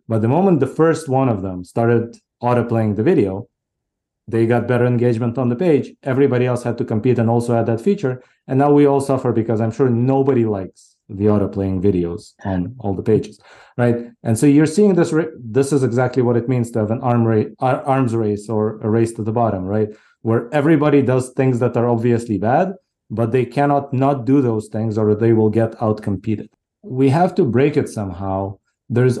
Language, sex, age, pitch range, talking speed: English, male, 30-49, 105-130 Hz, 210 wpm